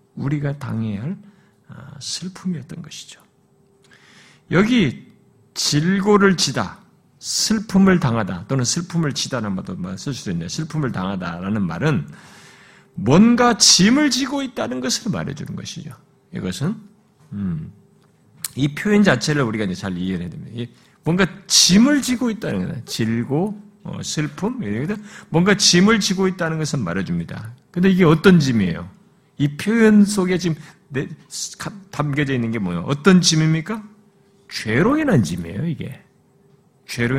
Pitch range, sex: 140-200 Hz, male